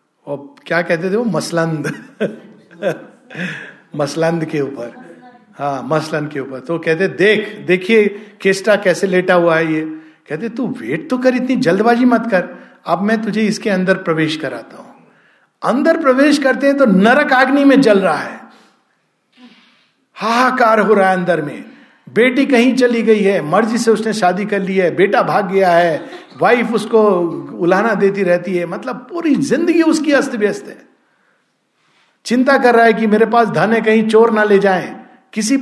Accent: native